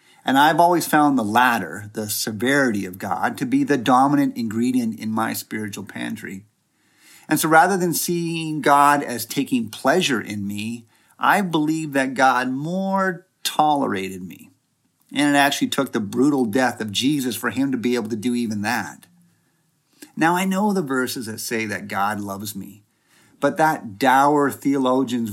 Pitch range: 110-145 Hz